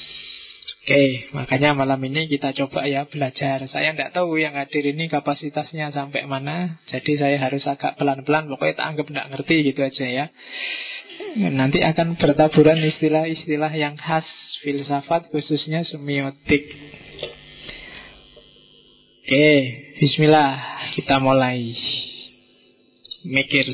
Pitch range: 140-155 Hz